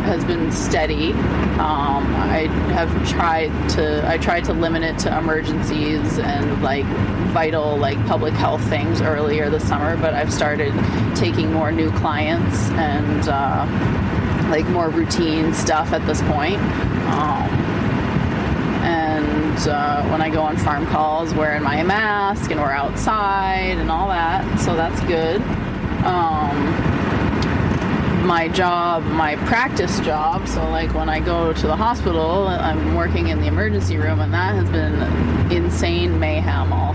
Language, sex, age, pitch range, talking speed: English, female, 20-39, 90-115 Hz, 145 wpm